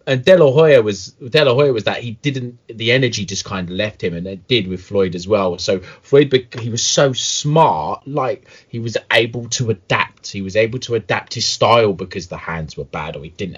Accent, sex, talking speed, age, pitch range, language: British, male, 225 wpm, 30-49, 85-115 Hz, English